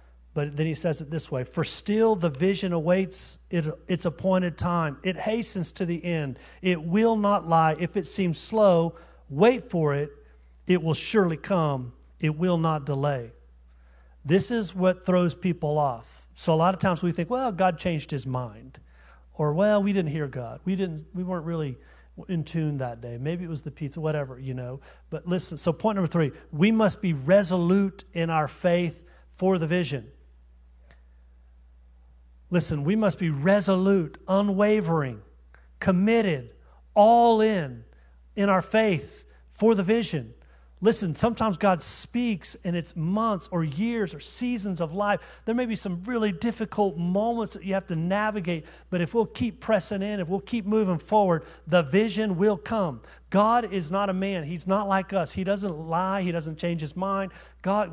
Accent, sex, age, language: American, male, 40-59, English